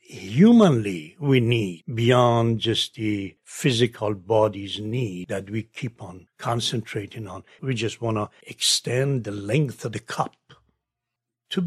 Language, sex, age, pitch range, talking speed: English, male, 60-79, 120-190 Hz, 135 wpm